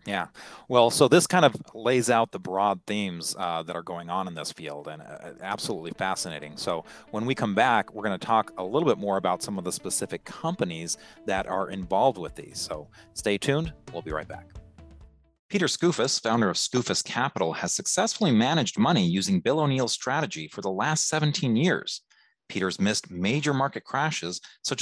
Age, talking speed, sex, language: 30-49, 190 wpm, male, English